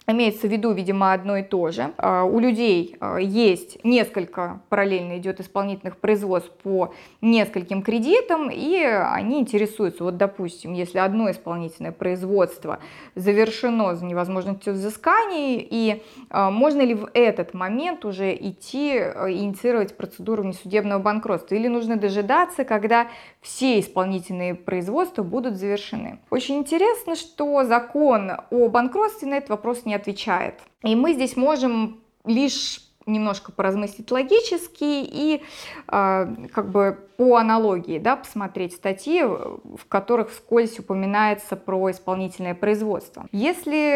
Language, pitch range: Russian, 190-255 Hz